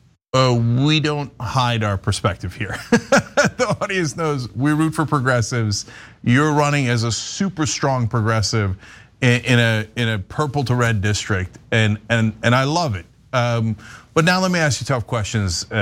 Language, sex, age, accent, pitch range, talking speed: English, male, 30-49, American, 115-145 Hz, 170 wpm